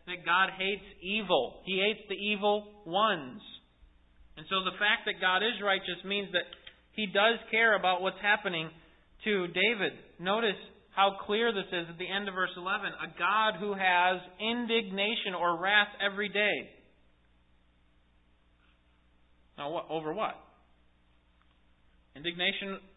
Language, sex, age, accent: English, male, 30-49, American